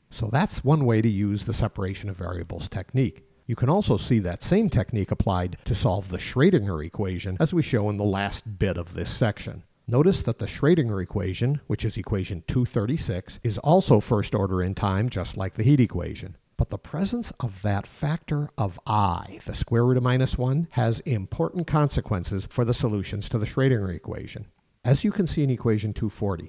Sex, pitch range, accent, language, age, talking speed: male, 100-130 Hz, American, English, 50-69, 195 wpm